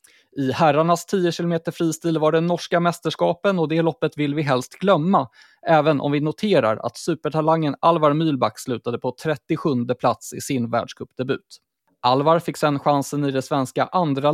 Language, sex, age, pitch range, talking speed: Swedish, male, 20-39, 135-175 Hz, 165 wpm